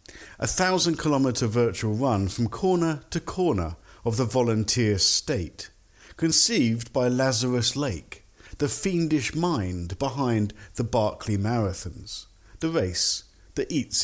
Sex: male